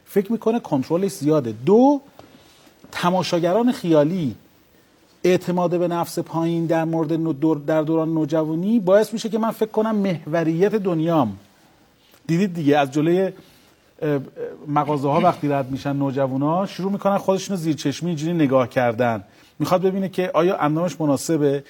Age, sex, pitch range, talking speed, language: 40-59, male, 155-205 Hz, 135 wpm, Persian